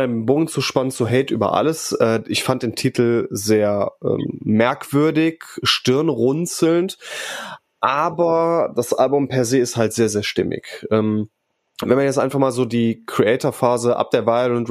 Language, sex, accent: German, male, German